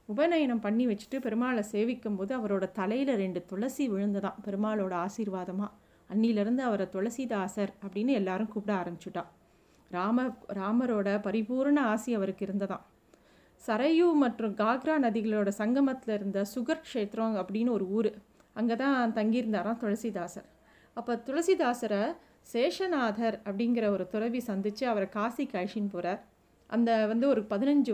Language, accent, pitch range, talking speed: Tamil, native, 205-250 Hz, 120 wpm